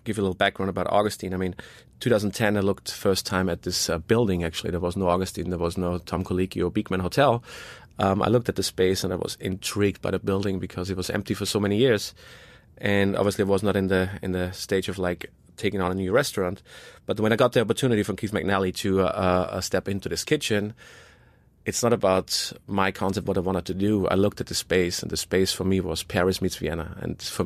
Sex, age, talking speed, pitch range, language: male, 30-49, 240 wpm, 90-105 Hz, English